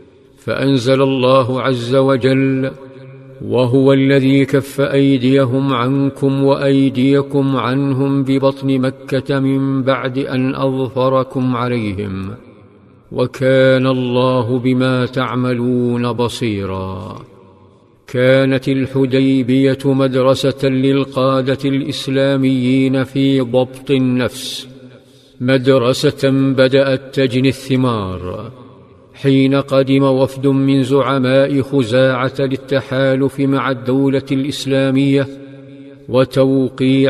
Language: Arabic